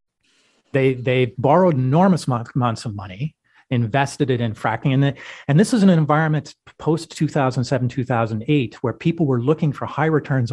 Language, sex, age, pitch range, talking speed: English, male, 40-59, 110-140 Hz, 155 wpm